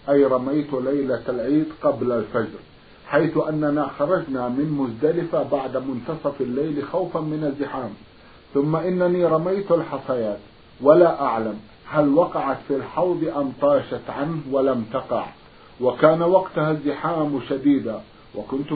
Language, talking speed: Arabic, 120 wpm